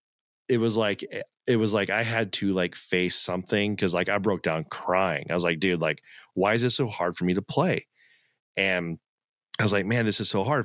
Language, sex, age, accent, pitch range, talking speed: English, male, 30-49, American, 95-115 Hz, 230 wpm